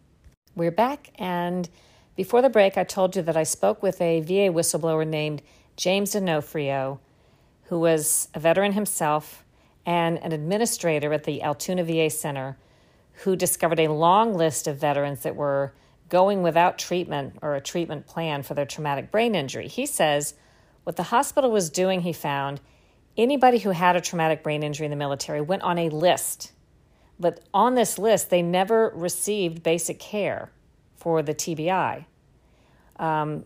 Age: 50-69